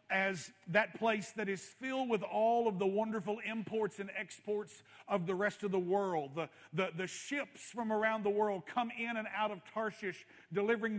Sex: male